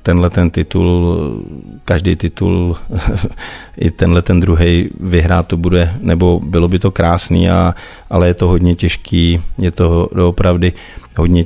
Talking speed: 140 wpm